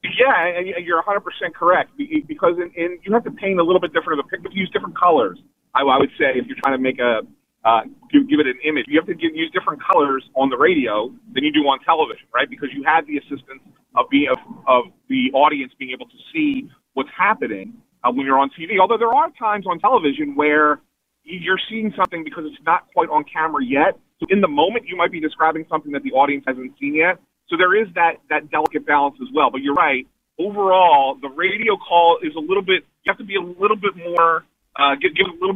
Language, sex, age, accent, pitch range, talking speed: English, male, 30-49, American, 140-215 Hz, 240 wpm